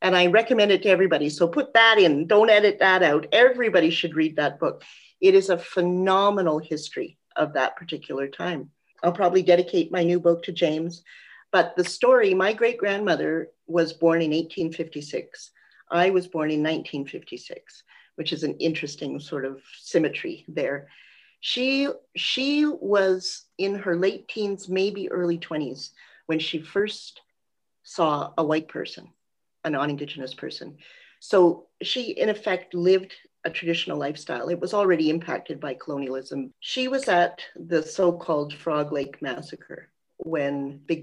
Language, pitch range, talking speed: English, 150-195 Hz, 150 wpm